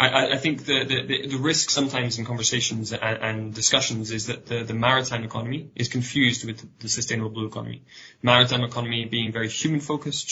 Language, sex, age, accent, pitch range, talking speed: English, male, 10-29, British, 115-130 Hz, 185 wpm